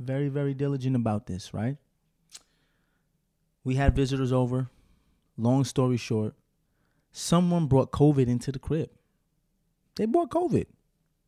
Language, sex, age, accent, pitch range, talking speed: English, male, 20-39, American, 110-140 Hz, 115 wpm